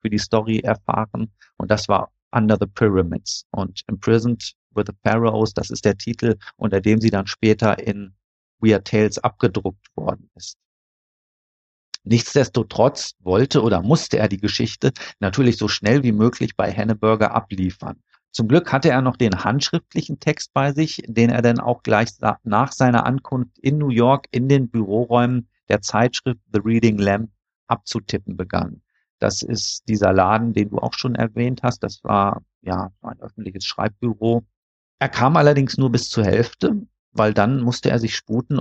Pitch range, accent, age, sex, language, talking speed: 105-125 Hz, German, 50-69, male, German, 160 wpm